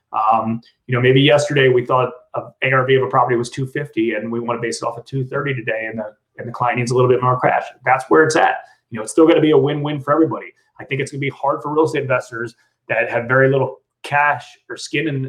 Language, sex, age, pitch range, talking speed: English, male, 30-49, 115-135 Hz, 275 wpm